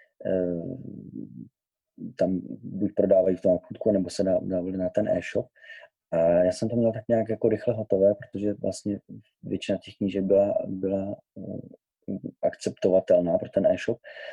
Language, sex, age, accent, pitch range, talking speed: Czech, male, 30-49, native, 95-105 Hz, 140 wpm